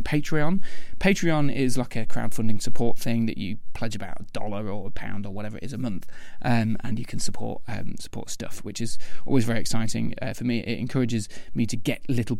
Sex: male